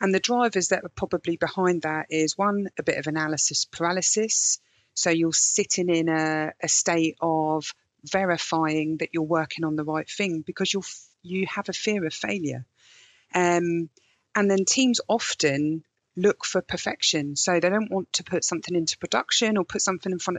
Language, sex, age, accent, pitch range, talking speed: English, female, 40-59, British, 160-195 Hz, 180 wpm